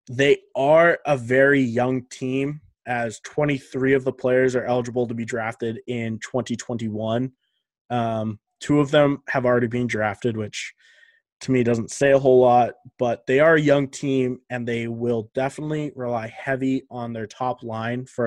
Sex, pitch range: male, 115-135 Hz